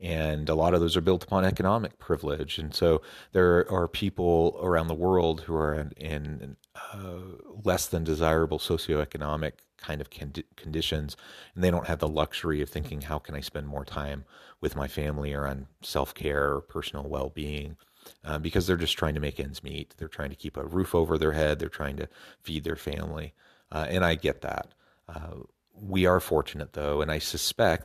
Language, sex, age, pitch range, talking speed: English, male, 30-49, 75-85 Hz, 190 wpm